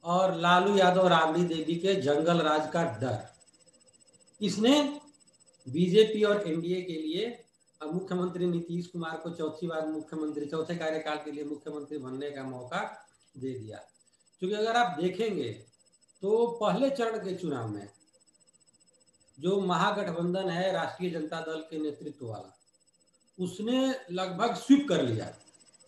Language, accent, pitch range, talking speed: Hindi, native, 160-210 Hz, 130 wpm